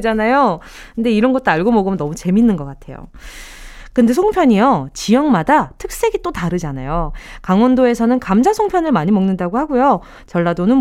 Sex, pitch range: female, 185-300 Hz